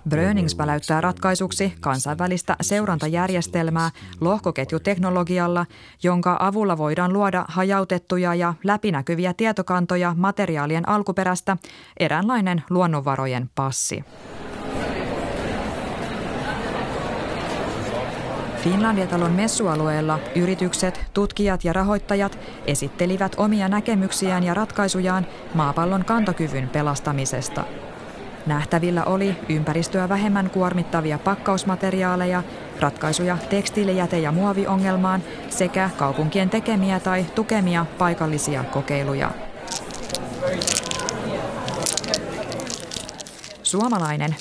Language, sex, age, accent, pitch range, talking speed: Finnish, female, 20-39, native, 155-190 Hz, 70 wpm